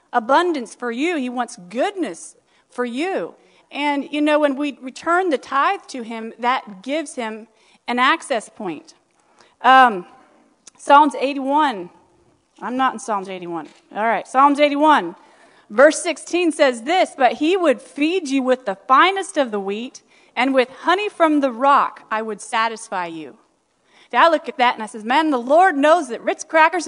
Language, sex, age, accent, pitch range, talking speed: English, female, 40-59, American, 225-320 Hz, 165 wpm